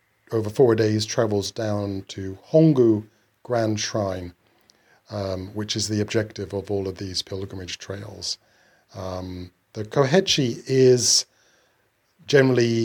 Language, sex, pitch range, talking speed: English, male, 100-120 Hz, 115 wpm